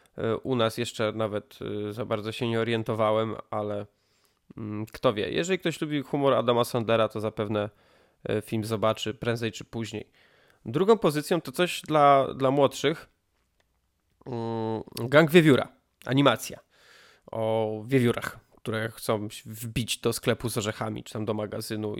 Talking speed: 130 wpm